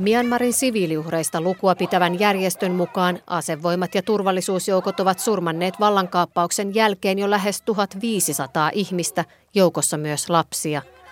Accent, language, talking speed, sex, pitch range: native, Finnish, 110 wpm, female, 165-205 Hz